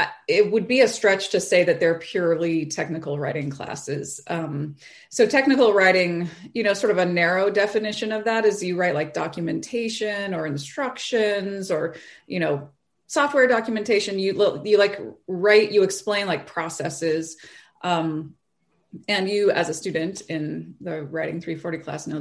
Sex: female